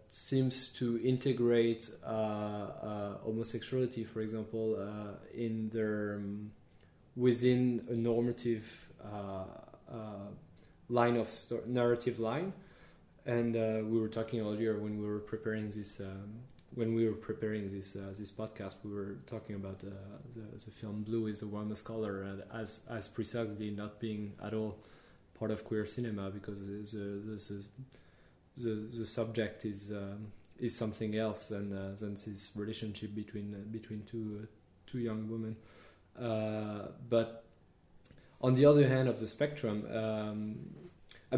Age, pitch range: 20-39, 105-120 Hz